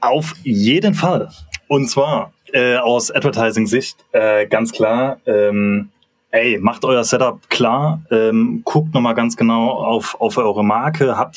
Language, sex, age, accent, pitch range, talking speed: German, male, 20-39, German, 105-150 Hz, 145 wpm